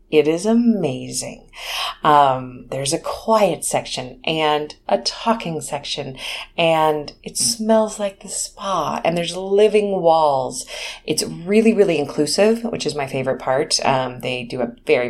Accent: American